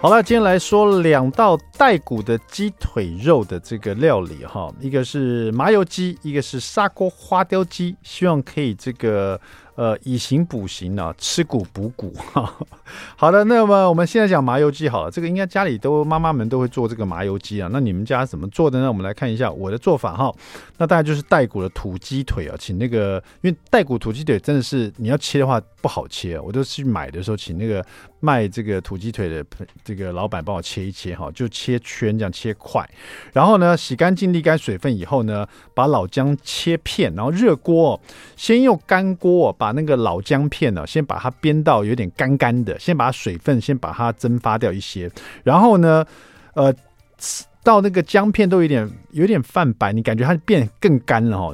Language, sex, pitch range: Chinese, male, 105-160 Hz